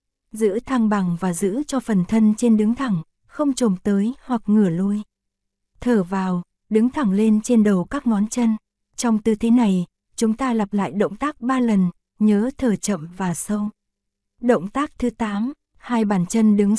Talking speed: 185 wpm